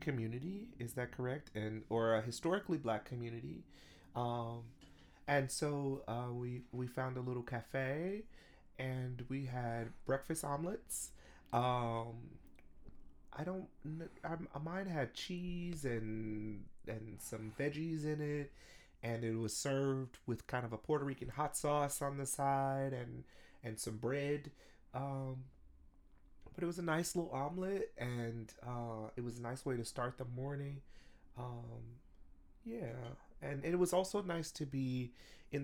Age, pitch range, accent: 30-49, 110-140 Hz, American